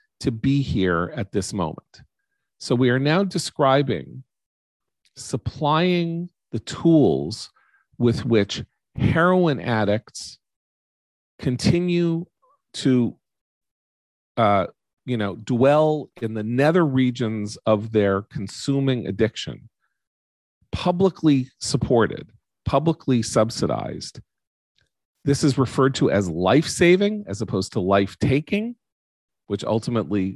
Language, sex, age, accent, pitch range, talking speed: English, male, 40-59, American, 100-135 Hz, 95 wpm